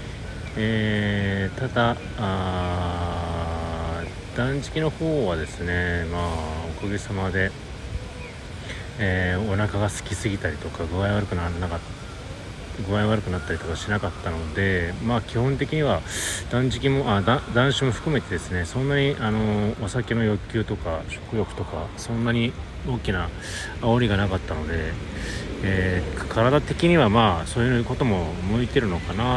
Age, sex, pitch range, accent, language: 30-49, male, 90-115 Hz, native, Japanese